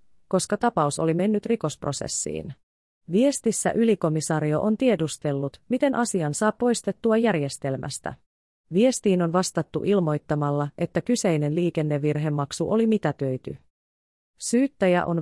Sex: female